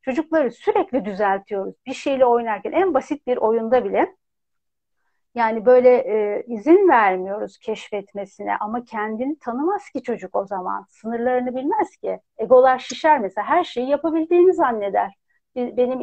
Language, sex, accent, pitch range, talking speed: Turkish, female, native, 215-270 Hz, 130 wpm